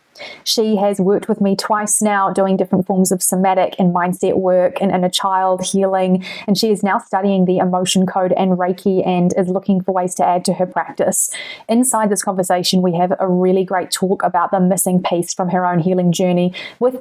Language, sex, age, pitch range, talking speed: English, female, 20-39, 185-205 Hz, 210 wpm